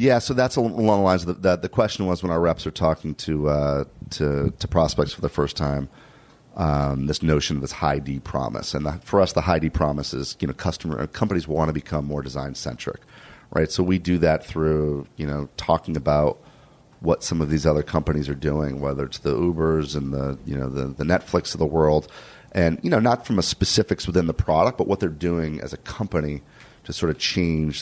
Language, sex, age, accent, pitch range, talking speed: English, male, 40-59, American, 75-90 Hz, 225 wpm